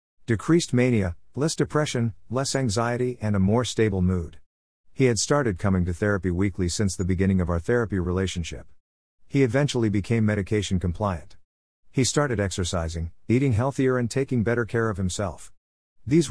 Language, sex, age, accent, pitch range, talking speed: English, male, 50-69, American, 85-115 Hz, 155 wpm